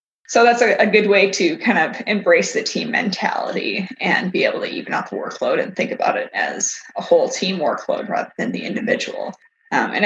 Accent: American